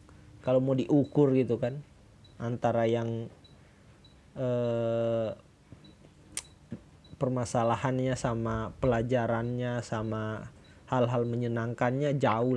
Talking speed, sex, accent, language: 70 wpm, male, native, Indonesian